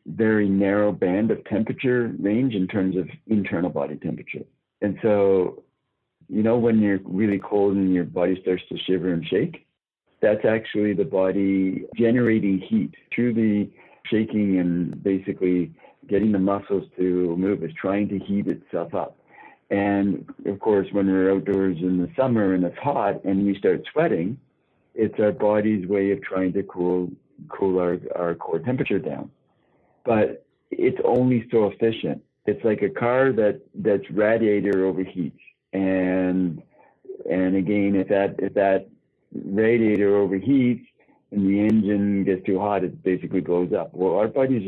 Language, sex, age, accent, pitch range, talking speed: English, male, 60-79, American, 95-110 Hz, 155 wpm